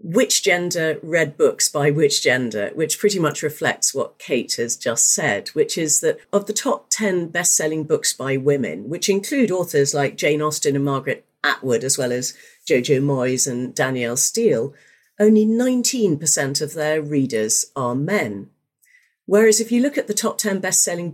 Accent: British